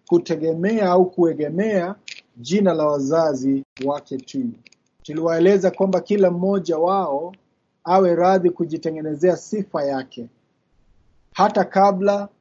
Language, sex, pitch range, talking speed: Swahili, male, 155-190 Hz, 95 wpm